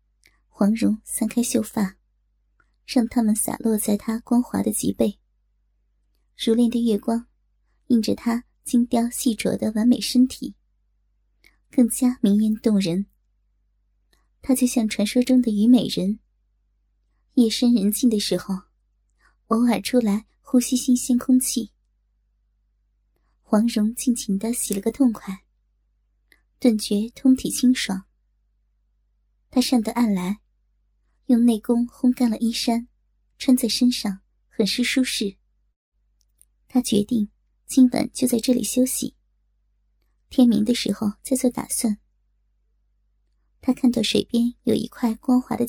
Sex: male